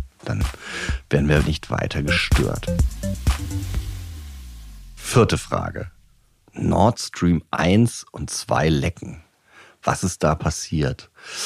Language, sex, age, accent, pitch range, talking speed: German, male, 40-59, German, 80-95 Hz, 95 wpm